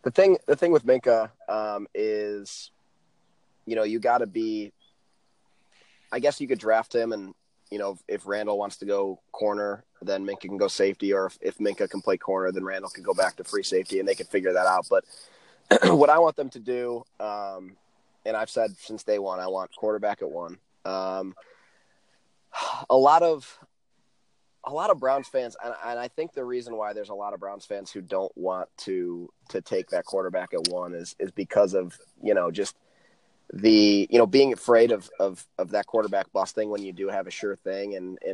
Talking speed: 210 wpm